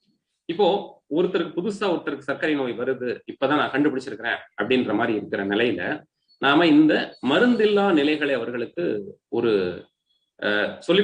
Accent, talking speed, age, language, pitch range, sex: native, 115 wpm, 30-49, Tamil, 125-170 Hz, male